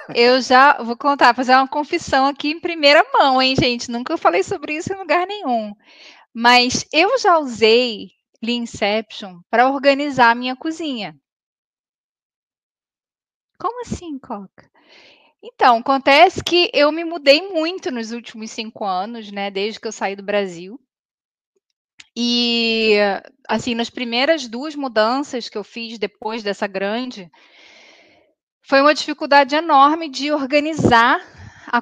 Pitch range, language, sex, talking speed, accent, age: 225-295 Hz, Portuguese, female, 135 wpm, Brazilian, 10-29